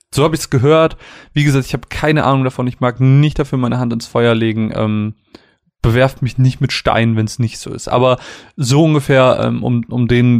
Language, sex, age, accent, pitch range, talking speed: German, male, 20-39, German, 115-140 Hz, 225 wpm